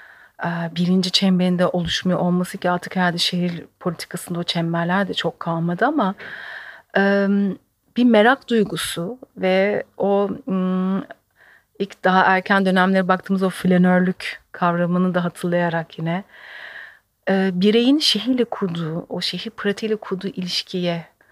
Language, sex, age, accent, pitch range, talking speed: Turkish, female, 40-59, native, 175-210 Hz, 110 wpm